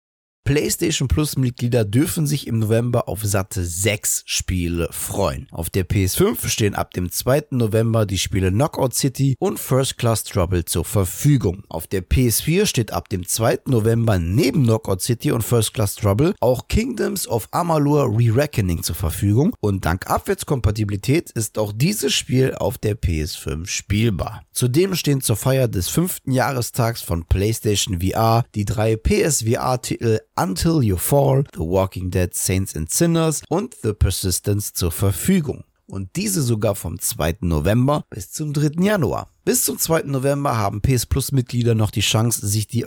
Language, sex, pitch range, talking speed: German, male, 95-135 Hz, 160 wpm